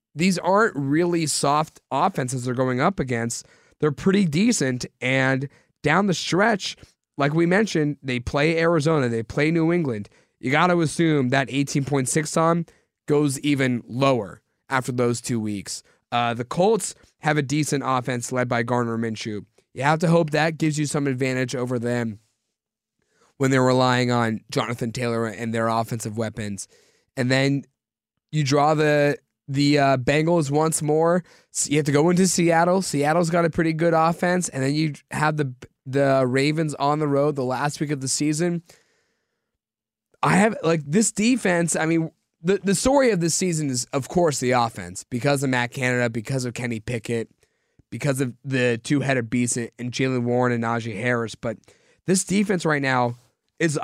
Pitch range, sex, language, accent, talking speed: 125-160 Hz, male, English, American, 170 wpm